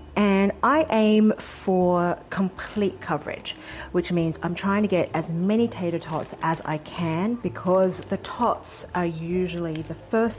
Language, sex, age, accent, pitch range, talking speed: English, female, 40-59, Australian, 160-205 Hz, 150 wpm